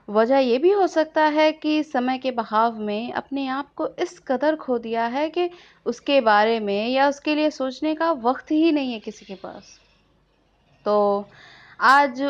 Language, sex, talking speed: Hindi, female, 180 wpm